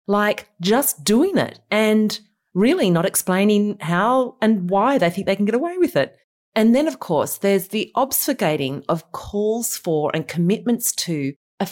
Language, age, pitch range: English, 30-49, 175-240 Hz